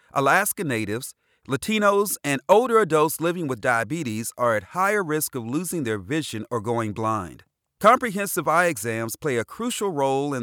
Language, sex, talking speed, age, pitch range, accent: English, male, 160 wpm, 40-59, 120-175 Hz, American